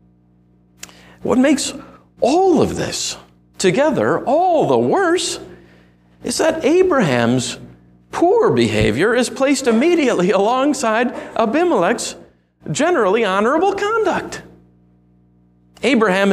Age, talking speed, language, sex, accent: 50-69, 85 wpm, English, male, American